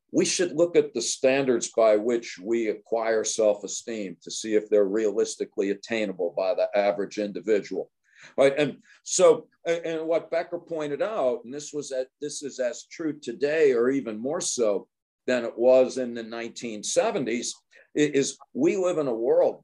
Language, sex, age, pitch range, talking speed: English, male, 50-69, 115-170 Hz, 165 wpm